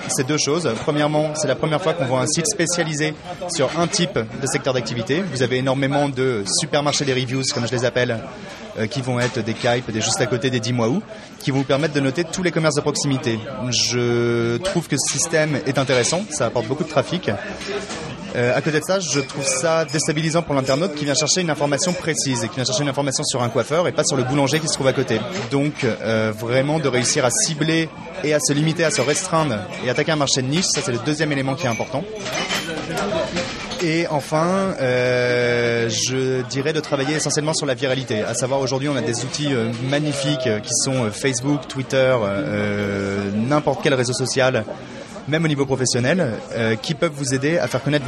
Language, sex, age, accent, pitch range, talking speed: French, male, 30-49, French, 125-155 Hz, 210 wpm